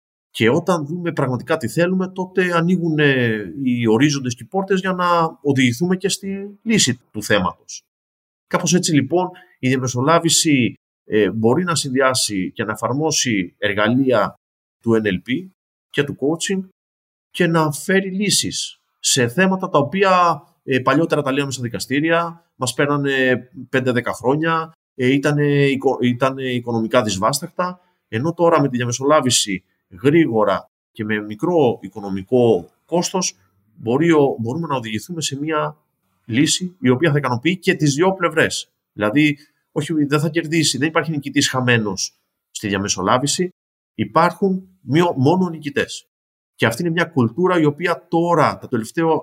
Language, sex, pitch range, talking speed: Greek, male, 115-170 Hz, 140 wpm